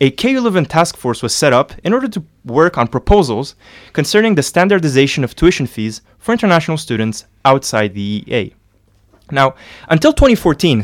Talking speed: 160 wpm